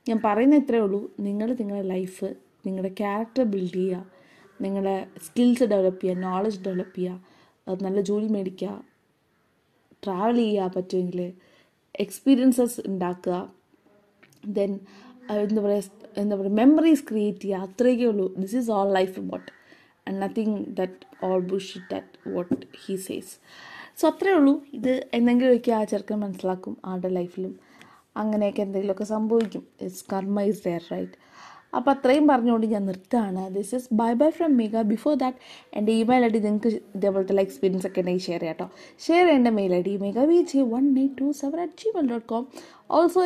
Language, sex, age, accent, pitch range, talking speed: Malayalam, female, 20-39, native, 195-255 Hz, 145 wpm